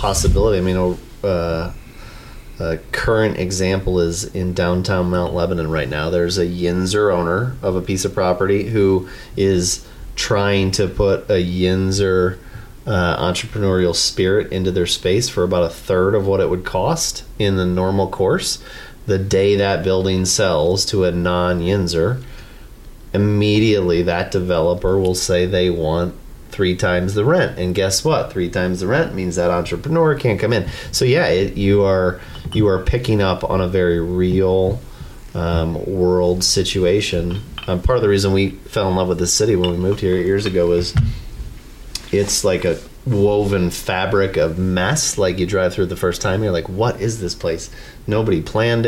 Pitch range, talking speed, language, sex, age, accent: 90-100 Hz, 175 wpm, English, male, 30-49, American